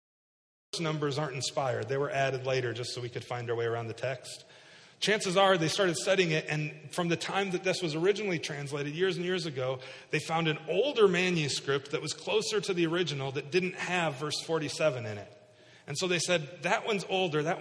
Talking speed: 210 wpm